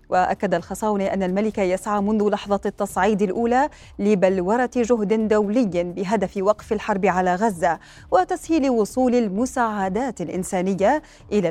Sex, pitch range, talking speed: female, 190-245 Hz, 115 wpm